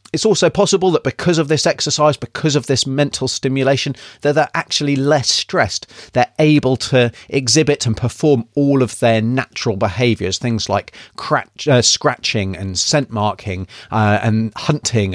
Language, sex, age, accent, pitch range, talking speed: English, male, 30-49, British, 110-140 Hz, 155 wpm